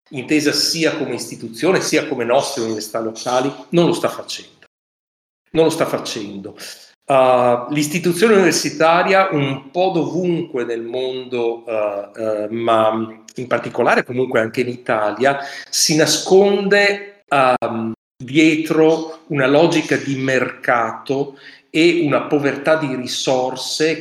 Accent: native